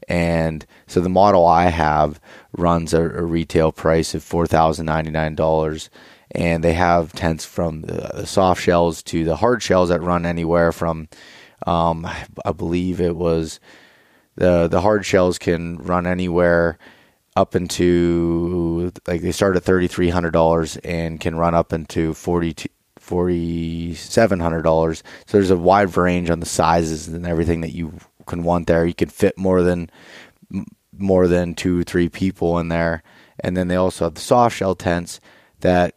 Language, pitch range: English, 85-90 Hz